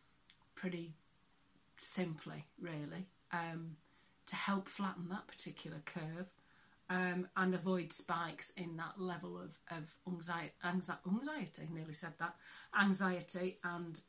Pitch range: 170-195 Hz